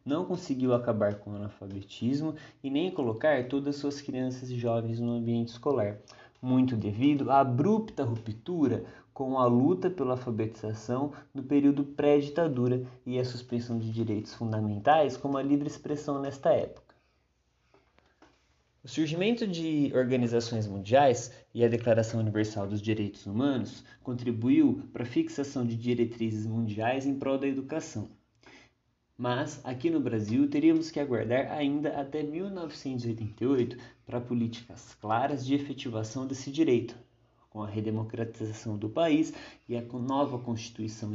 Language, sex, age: Portuguese, male, 20-39